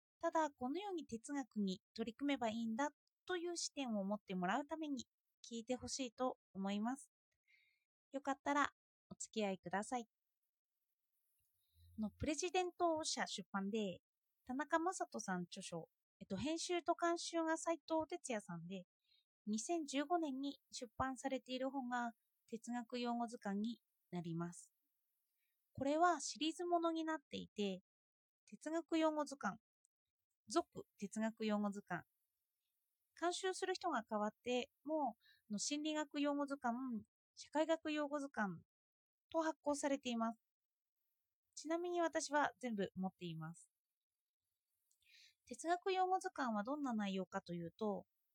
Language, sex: Japanese, female